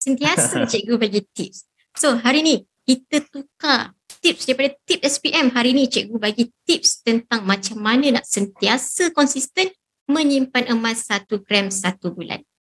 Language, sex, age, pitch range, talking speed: Malay, male, 20-39, 220-285 Hz, 140 wpm